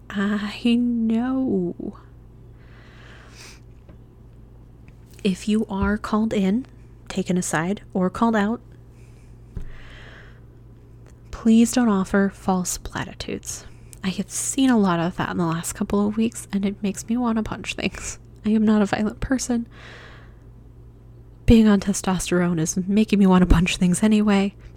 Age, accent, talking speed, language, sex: 20-39, American, 135 wpm, English, female